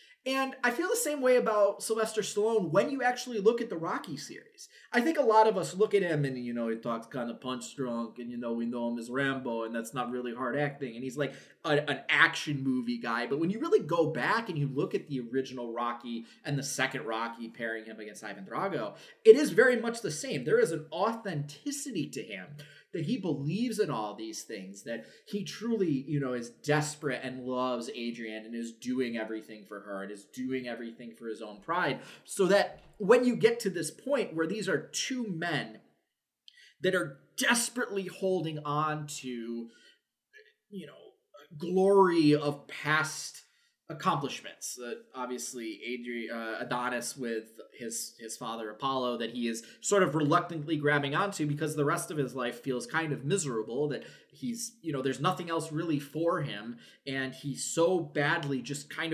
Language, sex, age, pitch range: English, male, 20-39, 120-185 Hz